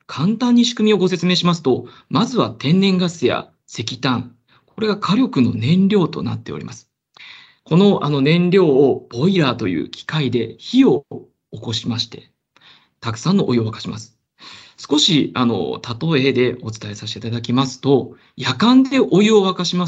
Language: Japanese